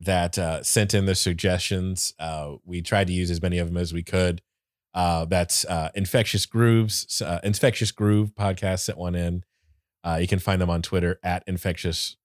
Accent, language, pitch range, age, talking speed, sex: American, English, 85-100 Hz, 30-49, 190 wpm, male